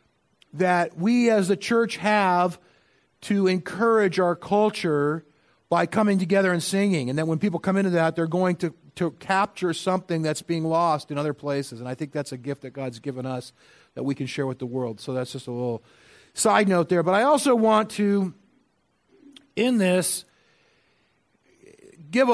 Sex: male